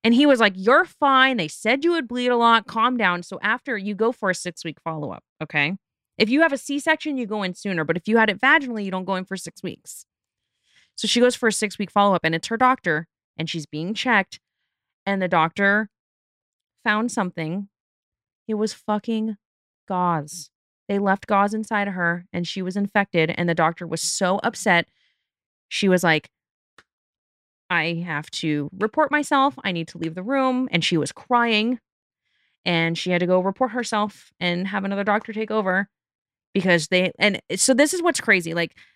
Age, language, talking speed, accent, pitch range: 30-49, English, 195 wpm, American, 170-225 Hz